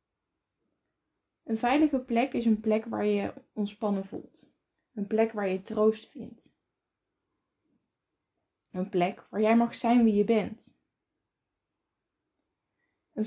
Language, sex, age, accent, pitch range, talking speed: Dutch, female, 10-29, Dutch, 205-235 Hz, 120 wpm